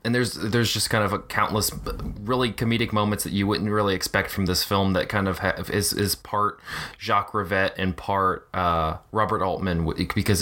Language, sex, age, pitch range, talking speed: English, male, 20-39, 90-105 Hz, 195 wpm